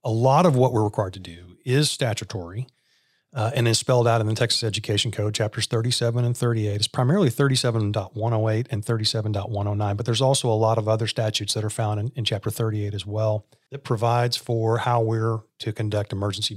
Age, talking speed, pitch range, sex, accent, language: 40-59, 195 wpm, 110-125 Hz, male, American, English